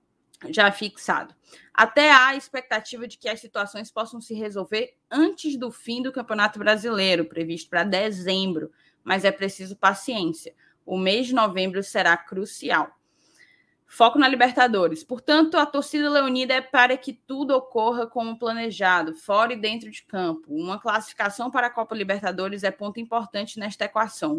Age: 10-29